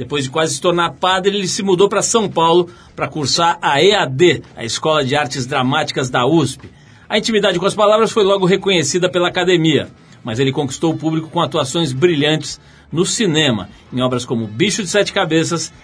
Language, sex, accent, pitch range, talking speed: Portuguese, male, Brazilian, 145-185 Hz, 190 wpm